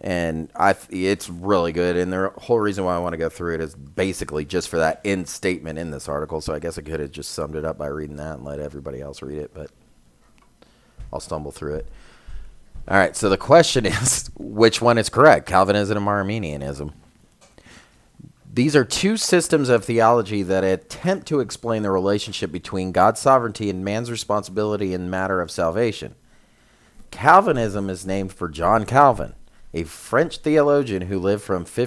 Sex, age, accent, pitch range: male, 30-49, American, 85-115 Hz